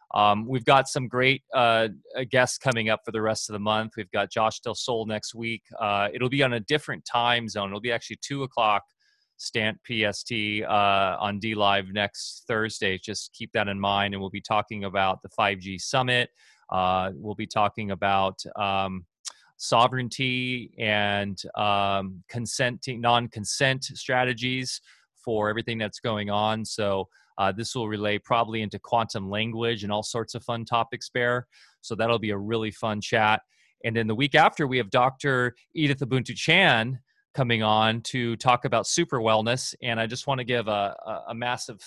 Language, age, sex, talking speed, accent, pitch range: English, 30-49, male, 175 wpm, American, 105-125 Hz